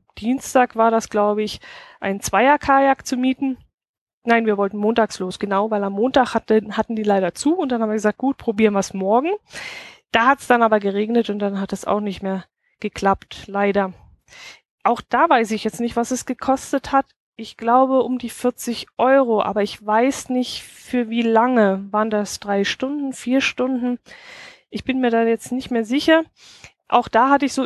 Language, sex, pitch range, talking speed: German, female, 205-255 Hz, 195 wpm